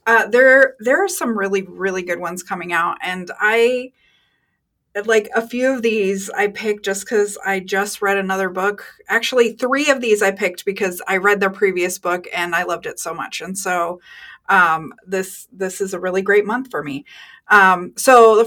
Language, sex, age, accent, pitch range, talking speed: English, female, 30-49, American, 190-250 Hz, 195 wpm